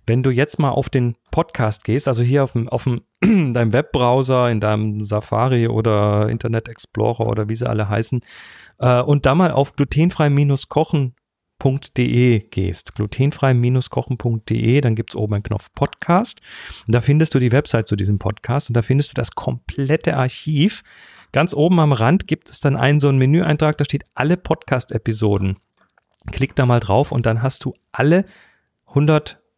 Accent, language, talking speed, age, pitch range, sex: German, German, 170 wpm, 40-59, 115-145 Hz, male